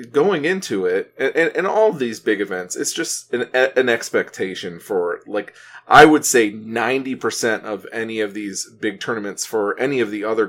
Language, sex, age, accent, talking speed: English, male, 30-49, American, 185 wpm